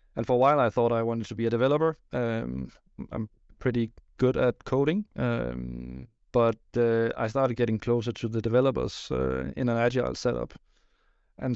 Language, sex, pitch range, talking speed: English, male, 110-125 Hz, 175 wpm